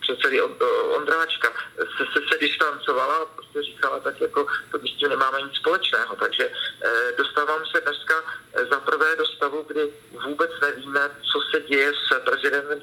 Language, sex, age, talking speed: Slovak, male, 50-69, 155 wpm